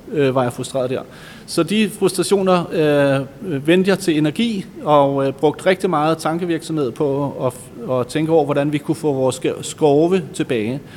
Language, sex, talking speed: Danish, male, 165 wpm